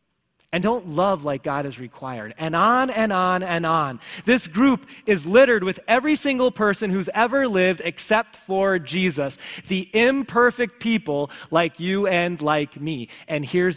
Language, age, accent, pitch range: English, 30-49, American, 135-190 Hz